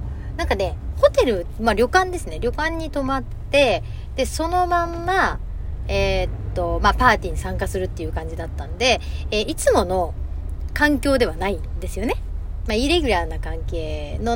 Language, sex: Japanese, female